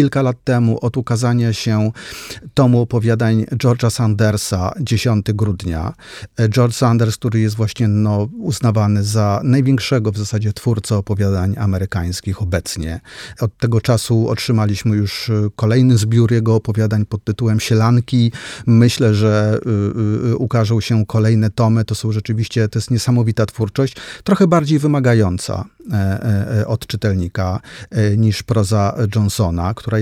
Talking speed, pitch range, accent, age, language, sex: 120 wpm, 105-125 Hz, native, 40-59, Polish, male